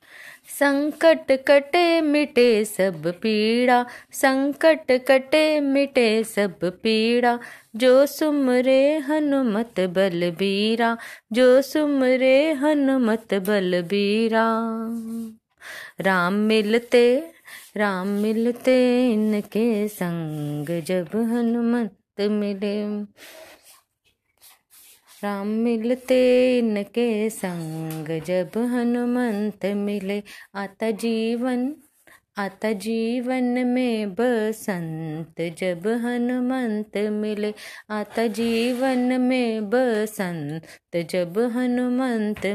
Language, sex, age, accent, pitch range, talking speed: Hindi, female, 20-39, native, 205-255 Hz, 70 wpm